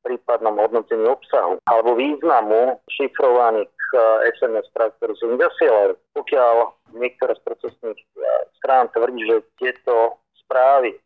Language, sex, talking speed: Slovak, male, 105 wpm